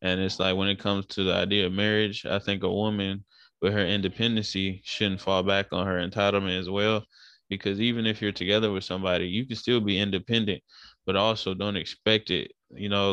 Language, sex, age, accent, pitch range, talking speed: English, male, 20-39, American, 95-115 Hz, 205 wpm